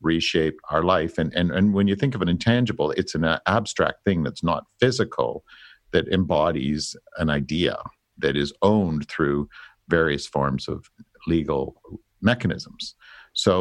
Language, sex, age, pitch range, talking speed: English, male, 50-69, 80-95 Hz, 145 wpm